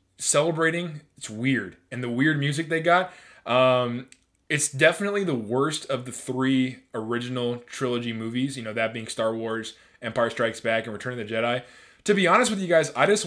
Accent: American